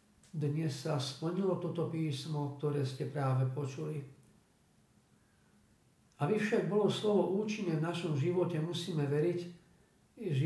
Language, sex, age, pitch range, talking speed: Slovak, male, 50-69, 140-170 Hz, 115 wpm